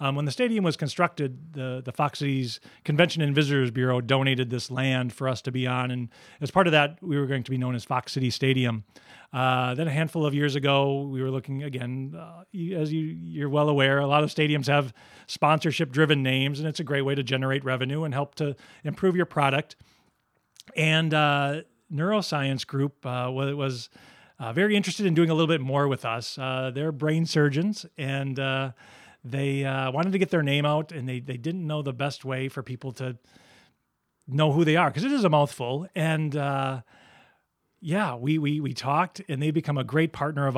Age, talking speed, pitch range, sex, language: 40-59, 205 wpm, 130-160 Hz, male, English